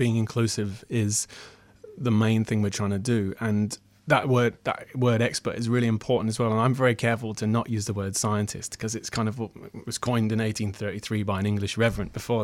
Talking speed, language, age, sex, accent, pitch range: 215 wpm, English, 30-49, male, British, 105-120 Hz